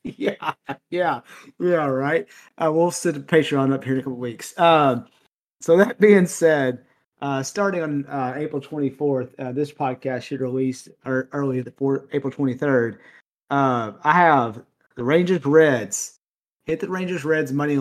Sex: male